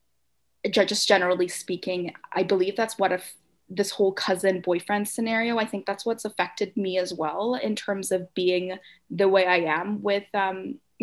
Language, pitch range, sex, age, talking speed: English, 180-215 Hz, female, 20-39, 165 wpm